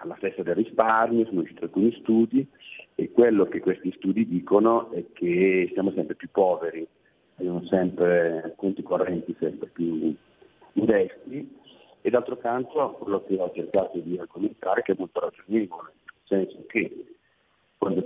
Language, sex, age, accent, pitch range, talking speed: Italian, male, 40-59, native, 90-115 Hz, 145 wpm